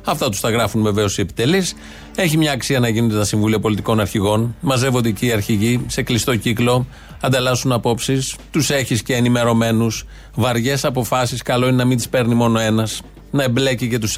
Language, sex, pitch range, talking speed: Greek, male, 115-145 Hz, 180 wpm